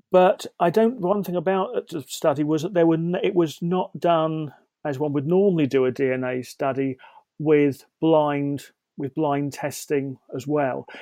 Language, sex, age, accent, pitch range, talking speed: English, male, 40-59, British, 145-175 Hz, 170 wpm